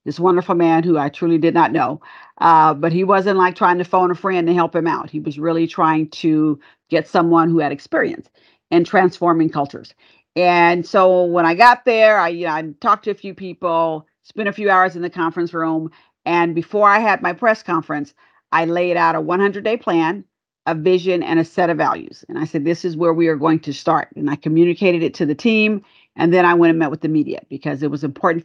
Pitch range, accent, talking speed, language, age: 160-185 Hz, American, 235 wpm, English, 50-69